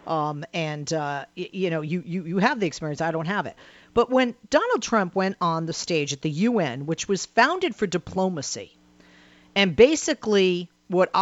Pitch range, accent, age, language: 165-230 Hz, American, 50-69, English